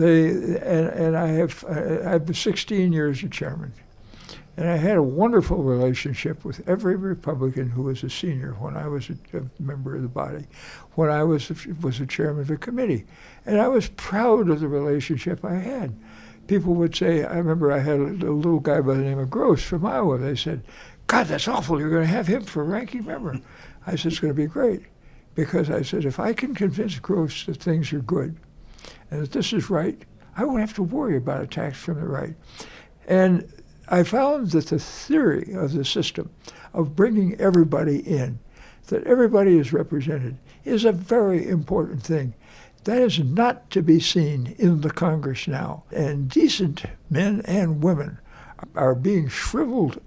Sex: male